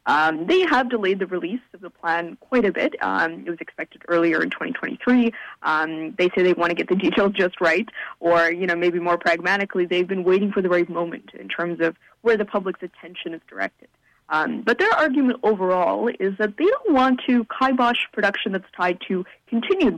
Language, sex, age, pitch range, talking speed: English, female, 20-39, 175-240 Hz, 205 wpm